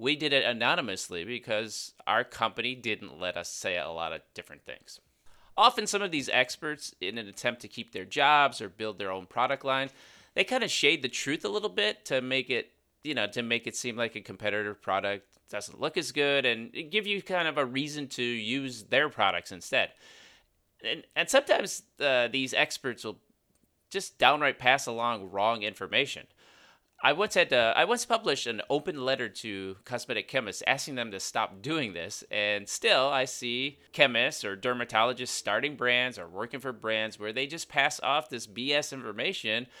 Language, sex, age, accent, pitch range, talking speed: English, male, 30-49, American, 110-135 Hz, 190 wpm